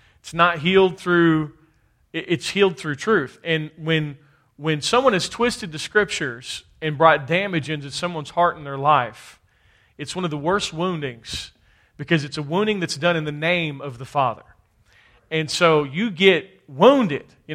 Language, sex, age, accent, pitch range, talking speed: English, male, 40-59, American, 145-190 Hz, 170 wpm